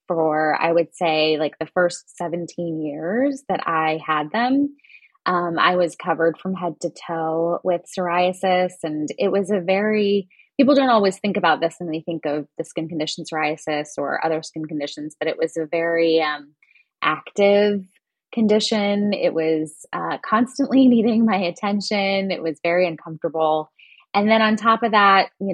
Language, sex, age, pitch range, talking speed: English, female, 20-39, 160-200 Hz, 170 wpm